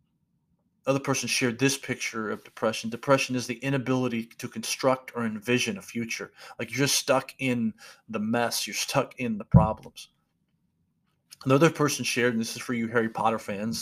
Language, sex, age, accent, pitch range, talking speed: English, male, 40-59, American, 115-130 Hz, 175 wpm